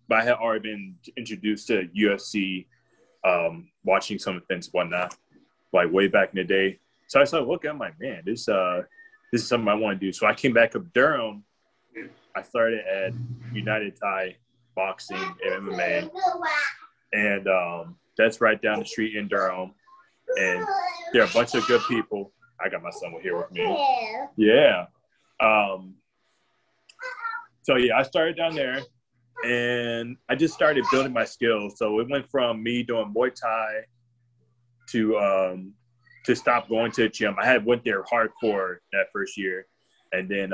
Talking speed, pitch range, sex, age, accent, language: 165 wpm, 100-125 Hz, male, 20-39, American, English